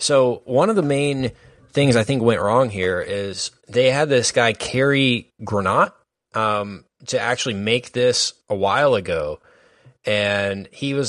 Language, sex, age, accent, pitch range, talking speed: English, male, 20-39, American, 95-120 Hz, 155 wpm